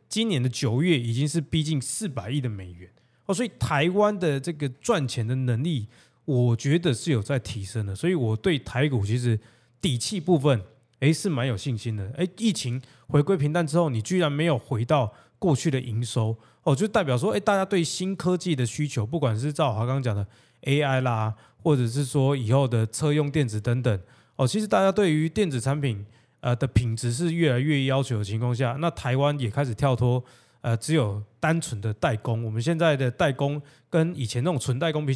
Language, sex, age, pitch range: Chinese, male, 20-39, 115-160 Hz